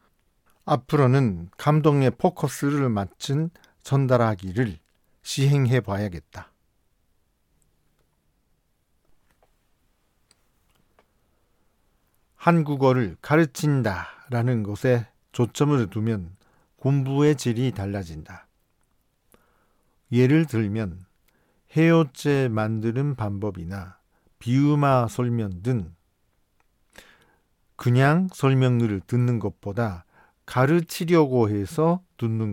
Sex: male